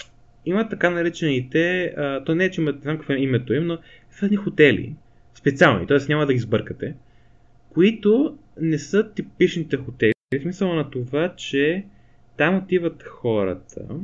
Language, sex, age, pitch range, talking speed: Bulgarian, male, 20-39, 120-160 Hz, 150 wpm